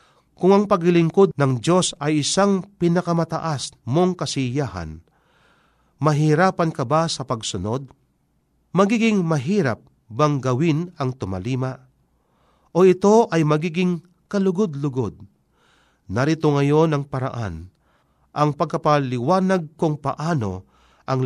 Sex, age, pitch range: male, 40-59, 120-165 Hz